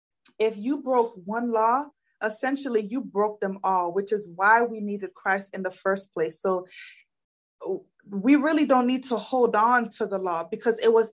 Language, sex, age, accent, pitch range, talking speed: English, female, 20-39, American, 195-240 Hz, 185 wpm